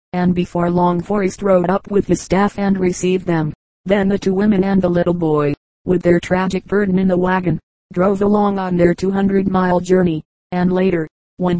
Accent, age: American, 40-59